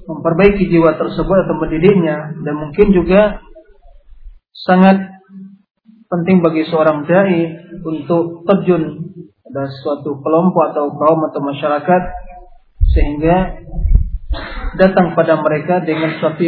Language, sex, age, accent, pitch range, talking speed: Indonesian, male, 40-59, native, 155-185 Hz, 100 wpm